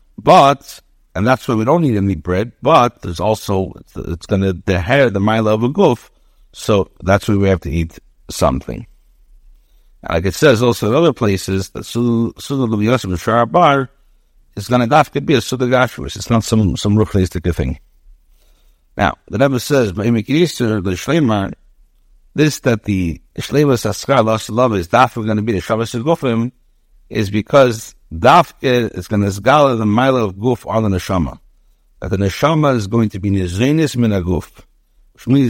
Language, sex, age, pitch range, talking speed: English, male, 60-79, 95-125 Hz, 170 wpm